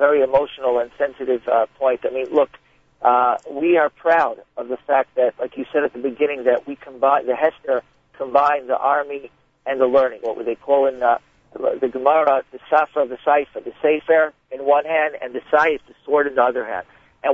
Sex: male